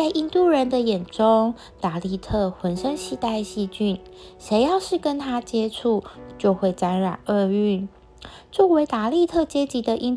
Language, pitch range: Chinese, 195-260 Hz